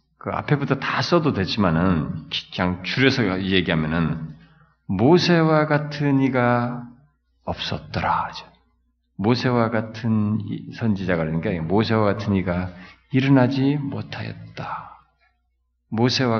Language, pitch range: Korean, 80-130 Hz